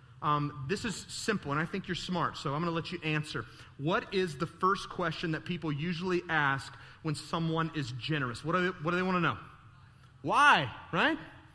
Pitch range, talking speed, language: 125-165 Hz, 190 wpm, English